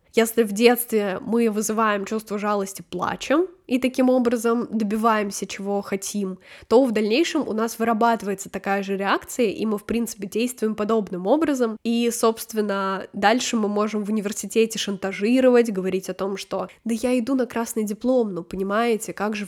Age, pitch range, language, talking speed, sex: 10-29, 195-230 Hz, Russian, 160 wpm, female